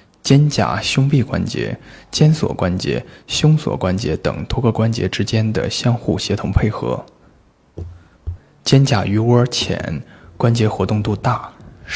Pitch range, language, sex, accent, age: 100-120 Hz, Chinese, male, native, 20-39